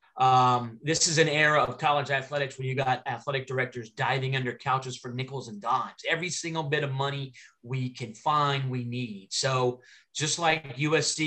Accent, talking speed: American, 180 wpm